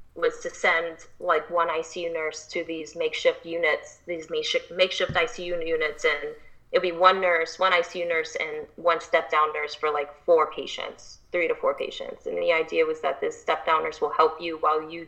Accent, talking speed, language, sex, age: American, 200 wpm, English, female, 20-39